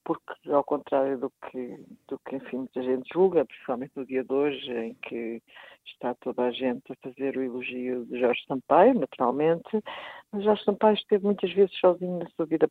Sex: female